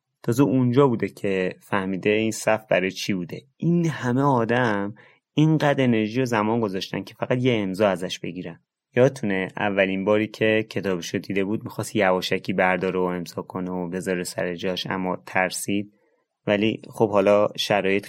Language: Persian